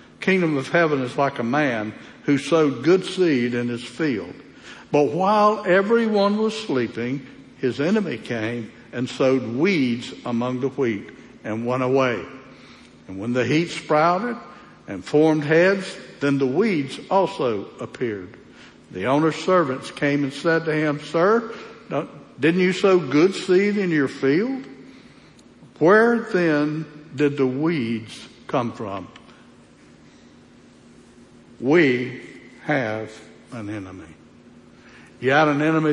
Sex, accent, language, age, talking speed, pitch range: male, American, English, 60-79, 125 wpm, 125-165 Hz